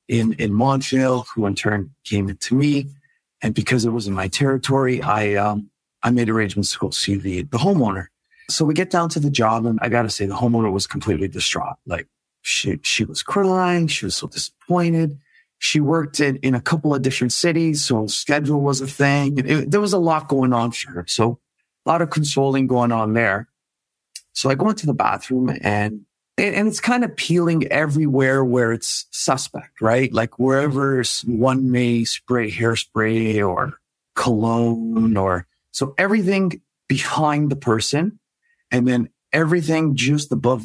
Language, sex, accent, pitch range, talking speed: English, male, American, 115-145 Hz, 180 wpm